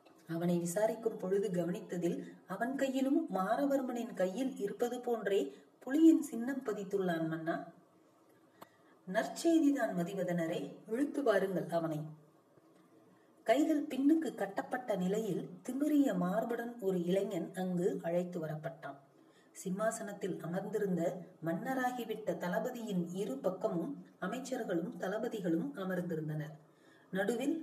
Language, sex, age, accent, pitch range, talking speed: Tamil, female, 30-49, native, 170-225 Hz, 65 wpm